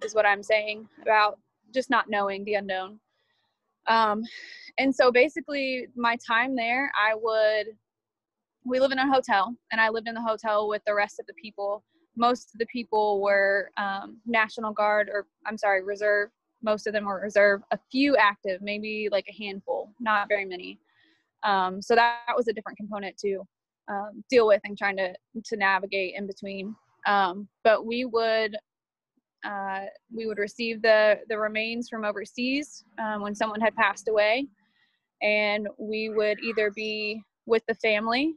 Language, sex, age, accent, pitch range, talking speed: English, female, 20-39, American, 205-230 Hz, 170 wpm